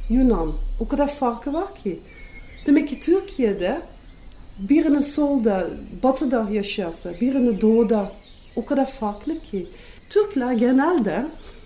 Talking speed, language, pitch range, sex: 110 wpm, Turkish, 185-255 Hz, female